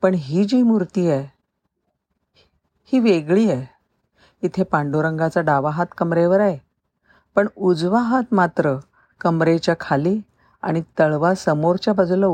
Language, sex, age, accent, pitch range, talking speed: Marathi, female, 40-59, native, 140-195 Hz, 115 wpm